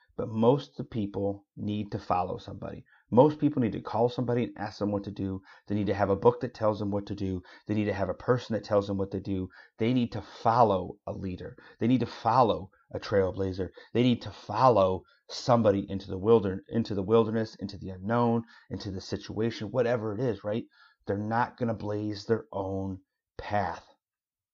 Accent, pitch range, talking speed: American, 100-125 Hz, 200 wpm